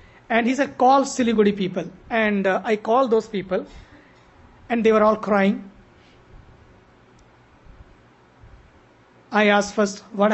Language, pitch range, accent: English, 195-230 Hz, Indian